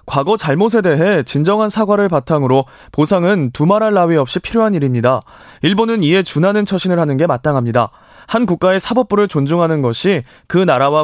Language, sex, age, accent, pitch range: Korean, male, 20-39, native, 140-210 Hz